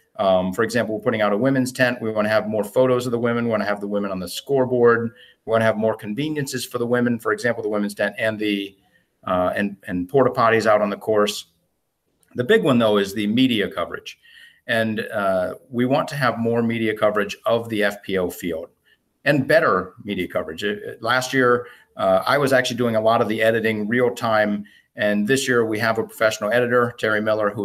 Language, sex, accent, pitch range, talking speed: English, male, American, 105-125 Hz, 220 wpm